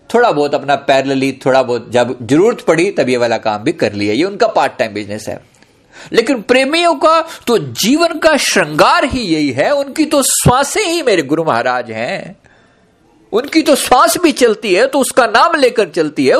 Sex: male